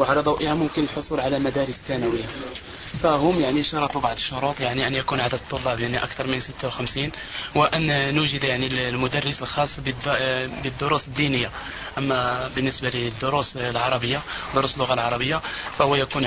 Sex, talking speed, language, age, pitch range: male, 140 wpm, Arabic, 20-39, 130-150 Hz